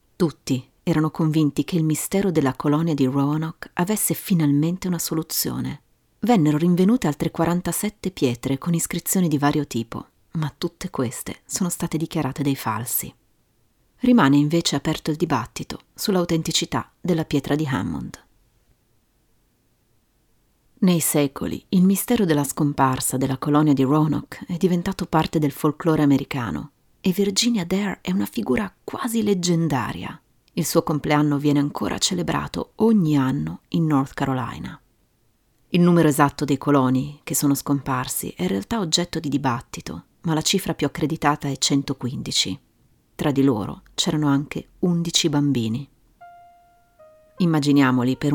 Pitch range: 140-175 Hz